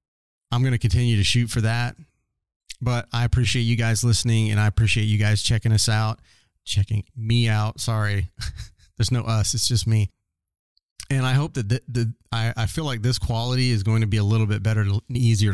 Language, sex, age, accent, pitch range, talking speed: English, male, 30-49, American, 105-120 Hz, 210 wpm